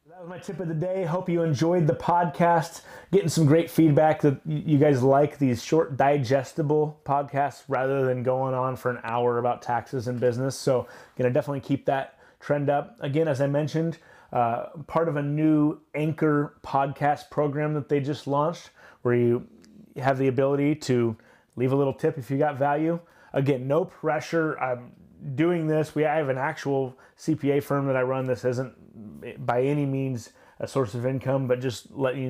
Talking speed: 185 wpm